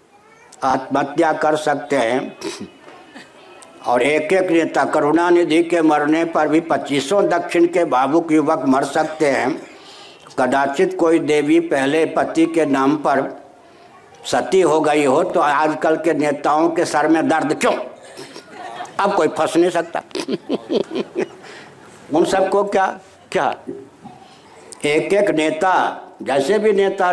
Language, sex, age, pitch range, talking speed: Hindi, male, 60-79, 155-200 Hz, 130 wpm